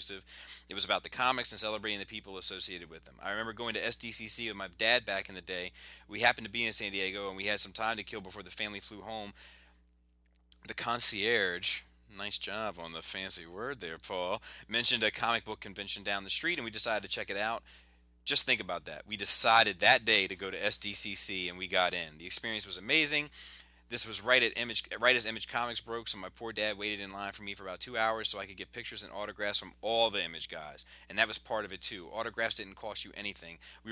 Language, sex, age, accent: English, male, 30-49, American